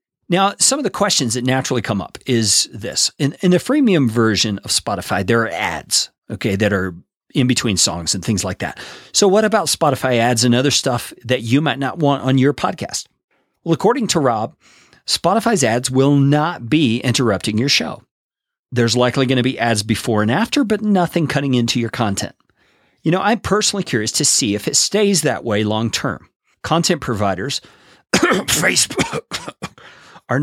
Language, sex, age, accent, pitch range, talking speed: English, male, 40-59, American, 110-155 Hz, 180 wpm